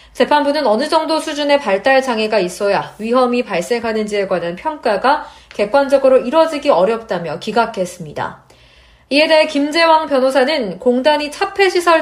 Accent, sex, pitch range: native, female, 215-295 Hz